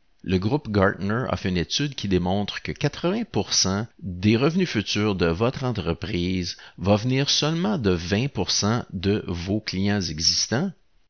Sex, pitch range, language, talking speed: male, 90-115 Hz, French, 140 wpm